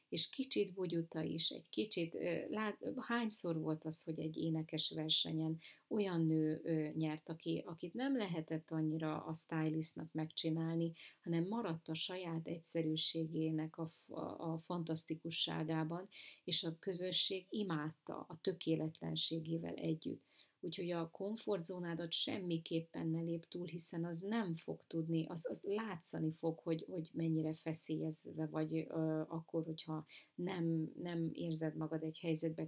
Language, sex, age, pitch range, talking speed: Hungarian, female, 30-49, 160-175 Hz, 125 wpm